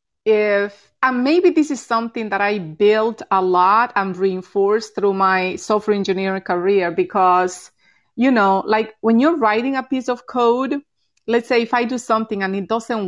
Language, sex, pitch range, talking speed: English, female, 215-275 Hz, 175 wpm